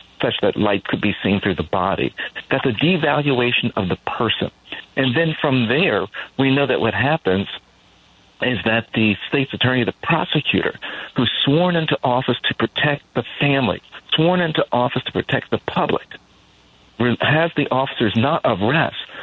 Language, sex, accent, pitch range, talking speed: English, male, American, 120-170 Hz, 160 wpm